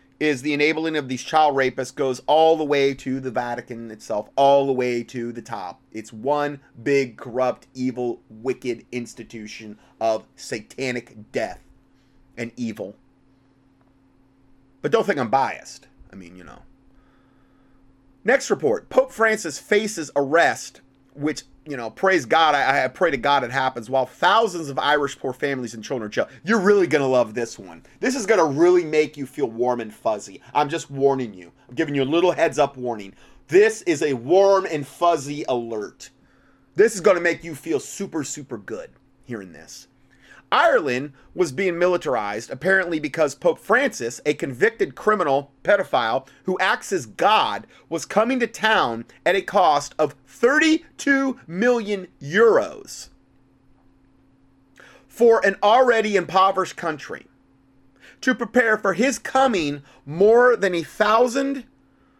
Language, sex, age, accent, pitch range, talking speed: English, male, 30-49, American, 130-190 Hz, 155 wpm